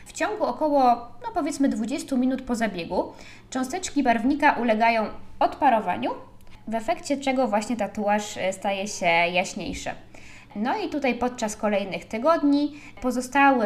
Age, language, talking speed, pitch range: 20-39, Polish, 125 wpm, 215-275 Hz